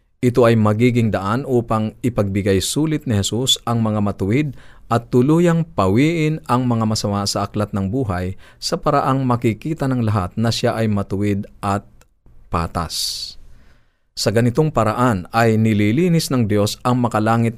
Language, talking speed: Filipino, 145 wpm